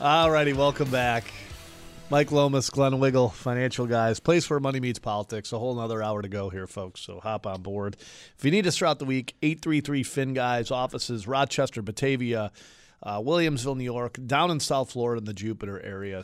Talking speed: 180 wpm